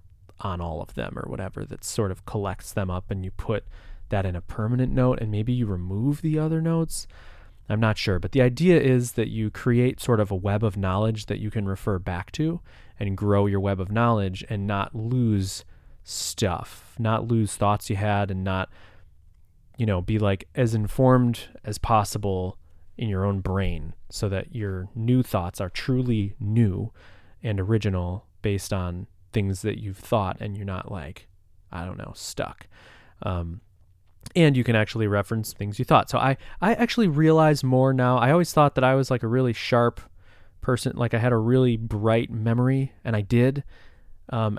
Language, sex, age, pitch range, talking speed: English, male, 20-39, 95-125 Hz, 190 wpm